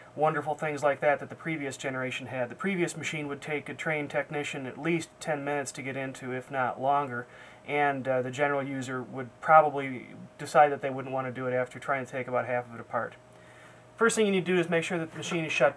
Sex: male